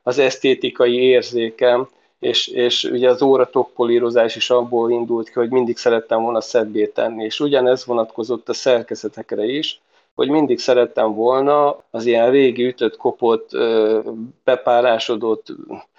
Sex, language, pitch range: male, Hungarian, 110-125 Hz